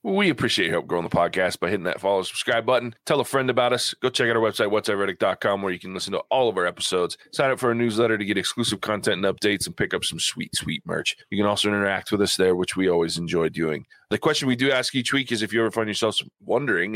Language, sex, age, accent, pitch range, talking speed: English, male, 20-39, American, 95-120 Hz, 275 wpm